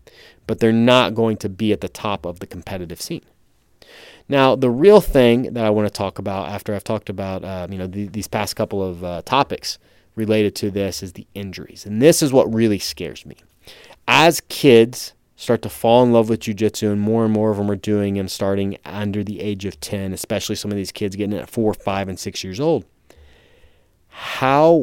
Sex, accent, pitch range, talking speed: male, American, 100-120 Hz, 215 wpm